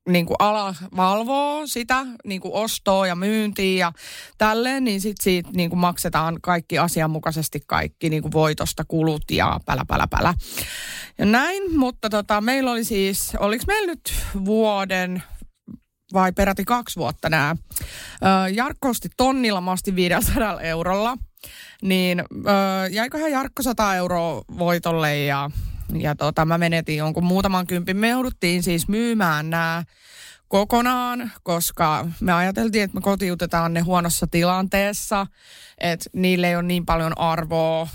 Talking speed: 130 wpm